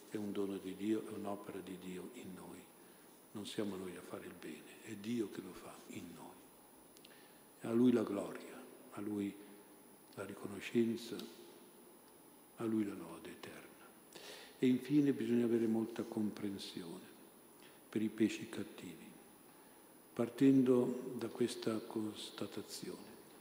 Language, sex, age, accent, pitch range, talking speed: Italian, male, 50-69, native, 100-120 Hz, 135 wpm